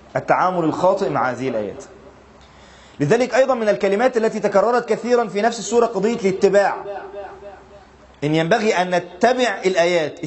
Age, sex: 30-49, male